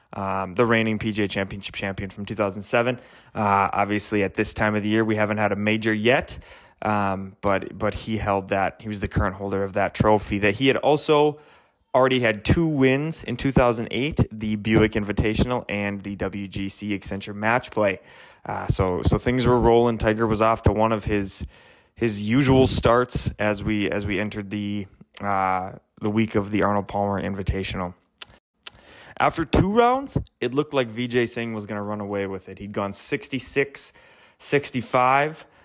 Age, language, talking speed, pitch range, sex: 20-39, English, 175 wpm, 100-120 Hz, male